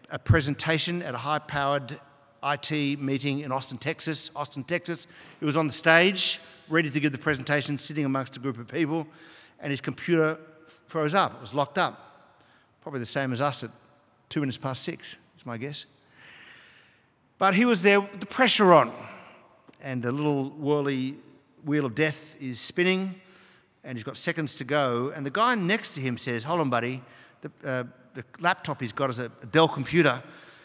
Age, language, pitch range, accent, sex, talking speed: 50-69, English, 130-165 Hz, Australian, male, 180 wpm